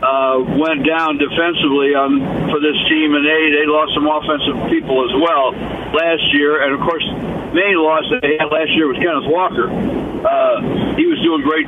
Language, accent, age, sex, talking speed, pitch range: English, American, 60-79, male, 190 wpm, 145-170 Hz